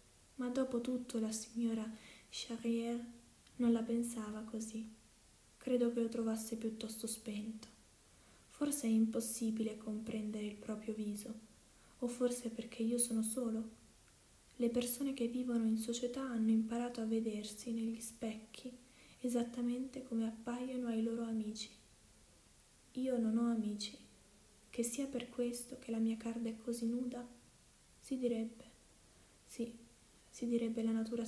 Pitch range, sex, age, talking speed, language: 225-245 Hz, female, 20-39, 130 wpm, Italian